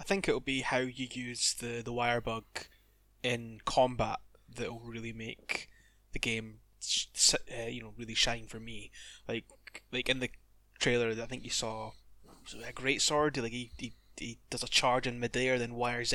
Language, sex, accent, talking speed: English, male, British, 180 wpm